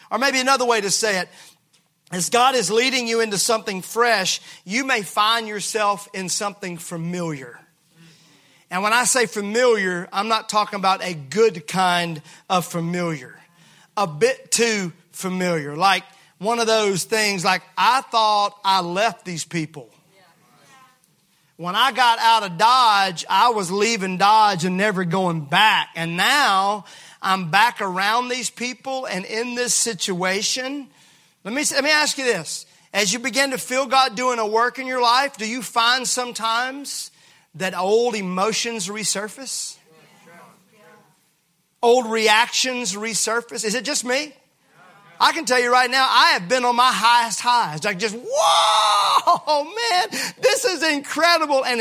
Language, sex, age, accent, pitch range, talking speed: English, male, 40-59, American, 185-245 Hz, 155 wpm